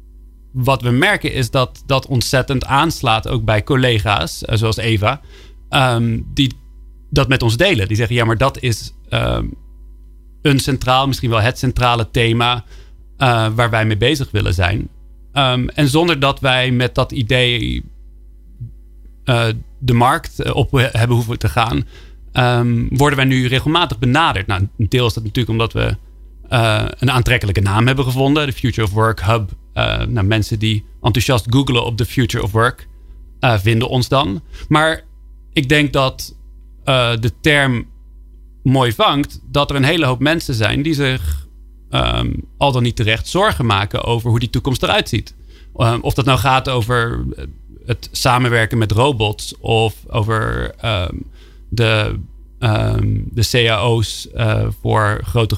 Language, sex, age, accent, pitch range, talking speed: Dutch, male, 40-59, Dutch, 105-130 Hz, 155 wpm